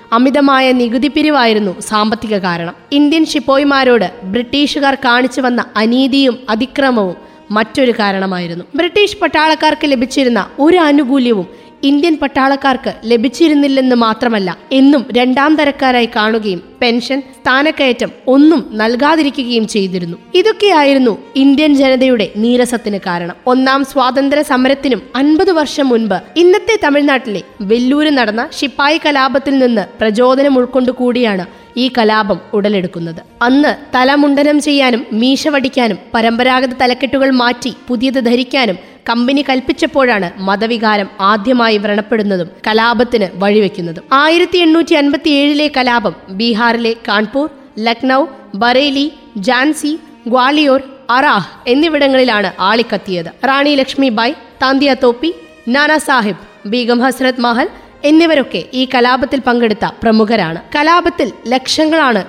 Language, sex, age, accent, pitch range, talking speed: Malayalam, female, 20-39, native, 225-280 Hz, 95 wpm